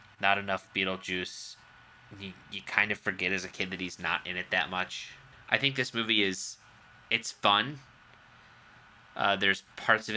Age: 20-39